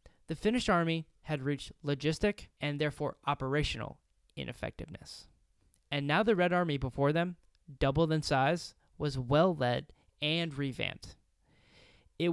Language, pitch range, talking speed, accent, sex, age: English, 135-185 Hz, 125 wpm, American, male, 10-29